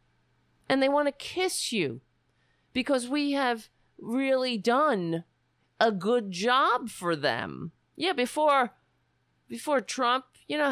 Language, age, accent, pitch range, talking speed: English, 40-59, American, 150-245 Hz, 125 wpm